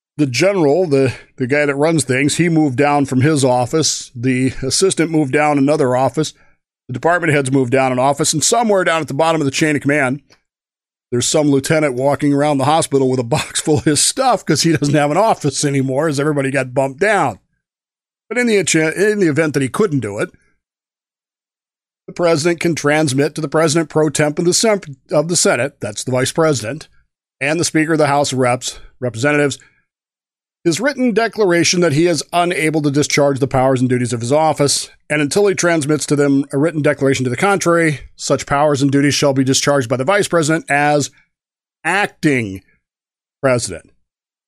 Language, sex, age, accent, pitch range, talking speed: English, male, 50-69, American, 135-160 Hz, 195 wpm